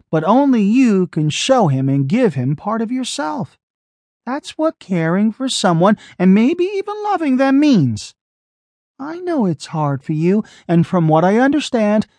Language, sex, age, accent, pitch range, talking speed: English, male, 40-59, American, 150-250 Hz, 165 wpm